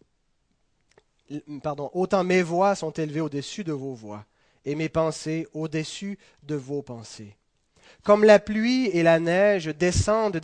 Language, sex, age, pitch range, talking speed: French, male, 30-49, 155-205 Hz, 140 wpm